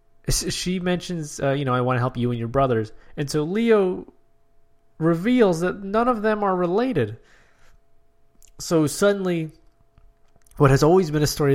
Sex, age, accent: male, 20-39, American